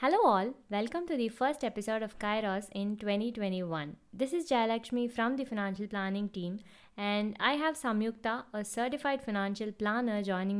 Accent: Indian